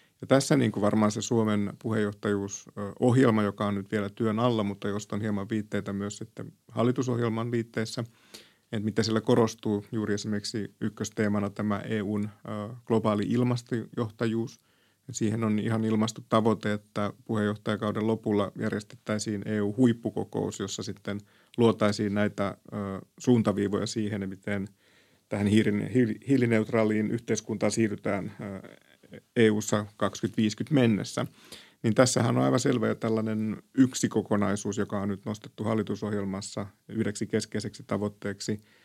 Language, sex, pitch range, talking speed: Finnish, male, 105-115 Hz, 115 wpm